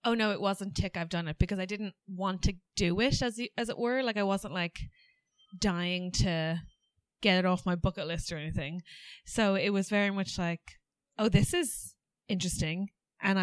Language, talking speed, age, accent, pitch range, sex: English, 195 wpm, 20-39, Irish, 180-215 Hz, female